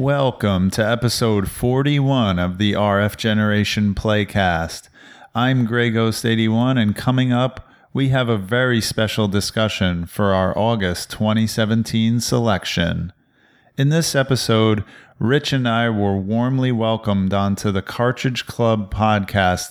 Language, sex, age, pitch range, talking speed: English, male, 40-59, 100-120 Hz, 120 wpm